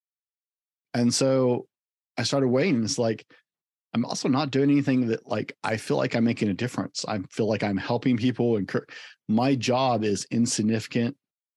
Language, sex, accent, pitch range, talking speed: English, male, American, 105-130 Hz, 170 wpm